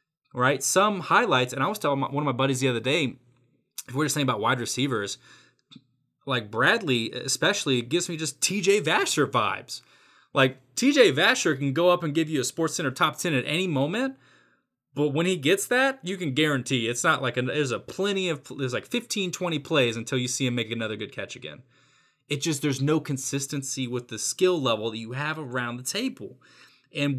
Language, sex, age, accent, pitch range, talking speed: English, male, 20-39, American, 120-150 Hz, 205 wpm